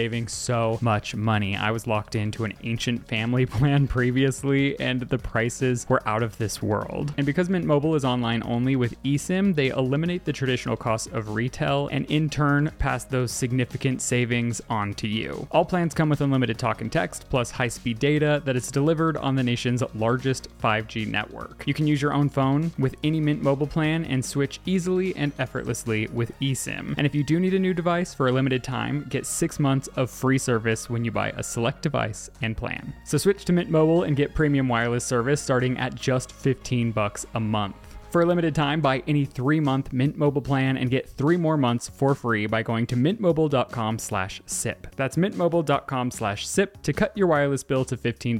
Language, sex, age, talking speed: English, male, 20-39, 200 wpm